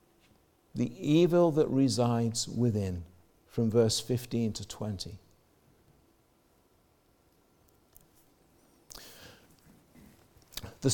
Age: 50-69